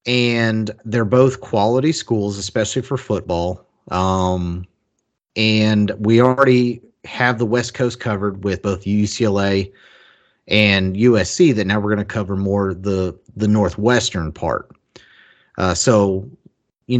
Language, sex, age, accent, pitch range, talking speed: English, male, 30-49, American, 100-130 Hz, 125 wpm